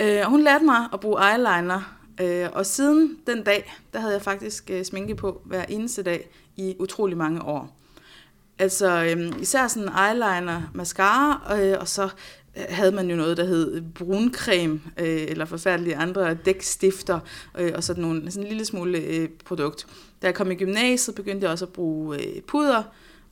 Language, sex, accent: Danish, female, native